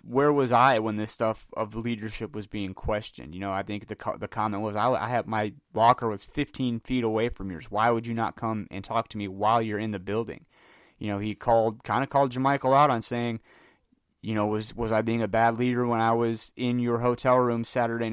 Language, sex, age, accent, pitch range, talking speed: English, male, 30-49, American, 100-120 Hz, 240 wpm